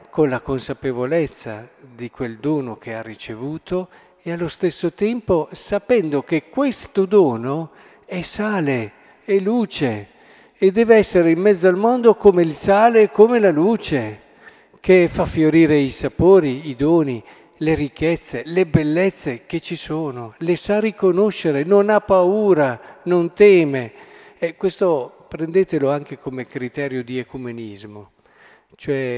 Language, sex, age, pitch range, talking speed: Italian, male, 50-69, 125-180 Hz, 135 wpm